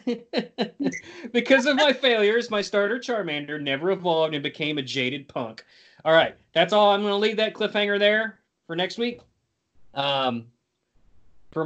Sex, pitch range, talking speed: male, 130-205 Hz, 155 wpm